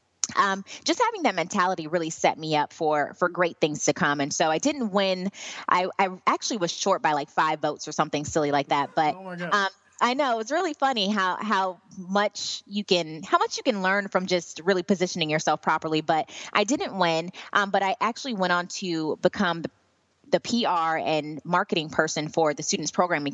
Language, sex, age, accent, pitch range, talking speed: English, female, 20-39, American, 155-195 Hz, 205 wpm